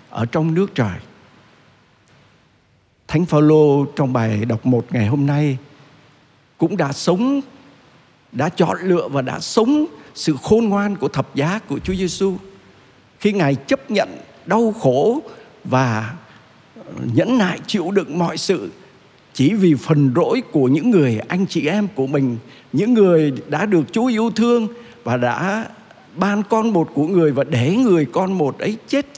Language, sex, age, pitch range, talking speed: Vietnamese, male, 60-79, 130-190 Hz, 160 wpm